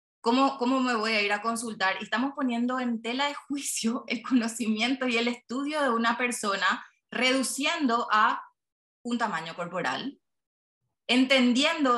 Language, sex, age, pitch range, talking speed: Spanish, female, 20-39, 180-245 Hz, 145 wpm